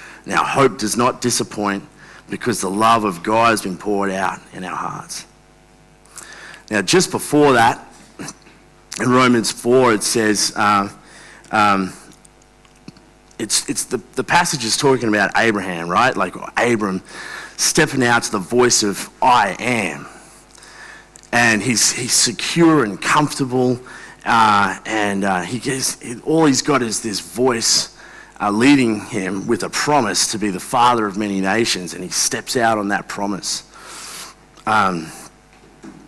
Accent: Australian